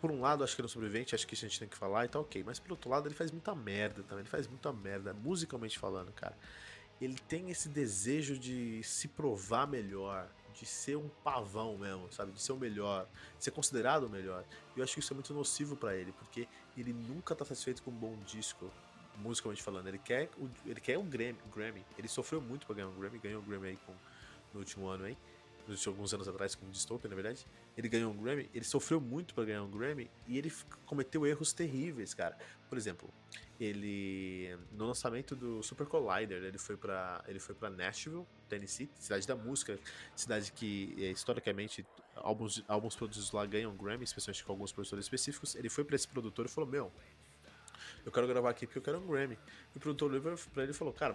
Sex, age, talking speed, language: male, 20-39, 225 wpm, Portuguese